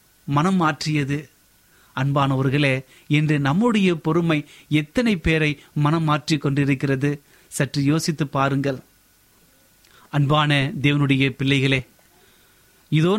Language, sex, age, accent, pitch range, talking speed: Tamil, male, 30-49, native, 140-180 Hz, 75 wpm